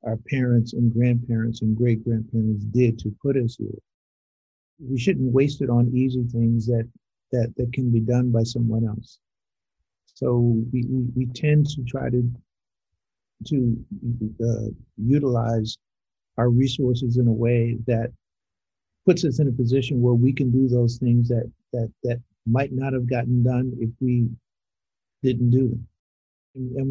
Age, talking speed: 50-69, 155 wpm